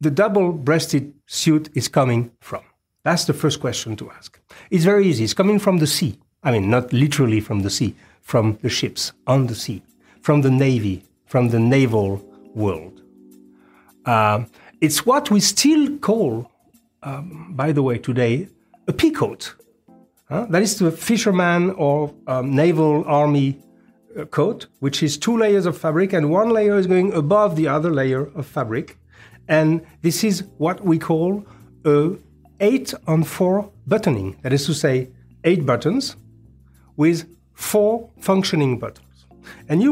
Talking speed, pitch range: 155 wpm, 130-190 Hz